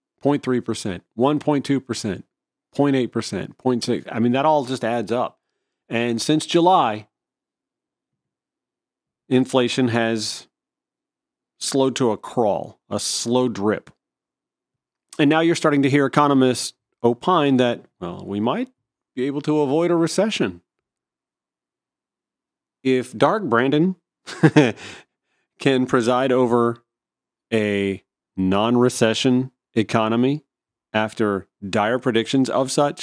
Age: 40-59